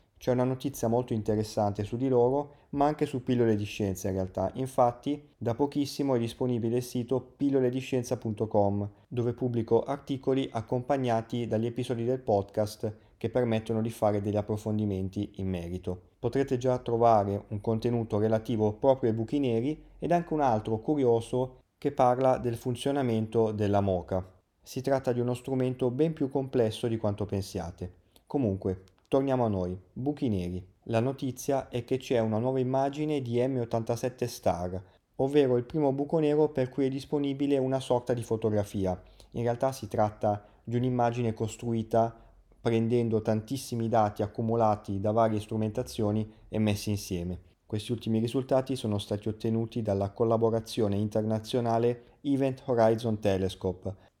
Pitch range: 105-130 Hz